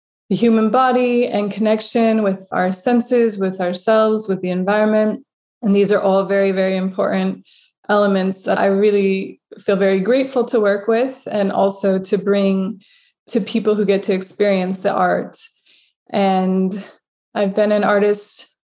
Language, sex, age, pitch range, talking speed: English, female, 20-39, 195-225 Hz, 150 wpm